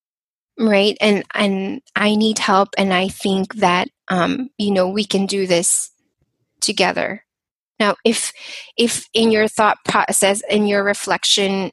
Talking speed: 145 wpm